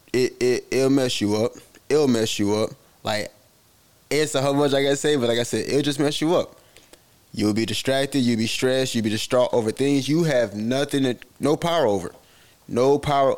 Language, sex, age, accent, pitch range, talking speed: English, male, 20-39, American, 110-140 Hz, 210 wpm